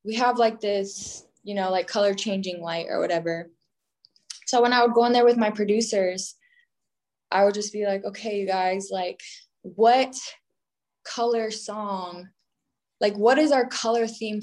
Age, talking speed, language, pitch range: 20-39, 165 wpm, English, 185-225 Hz